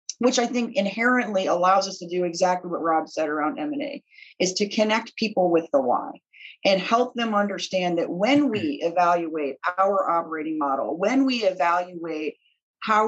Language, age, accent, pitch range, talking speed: English, 40-59, American, 175-225 Hz, 170 wpm